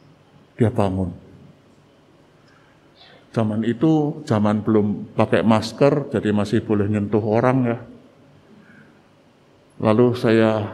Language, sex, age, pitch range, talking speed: Indonesian, male, 50-69, 110-135 Hz, 90 wpm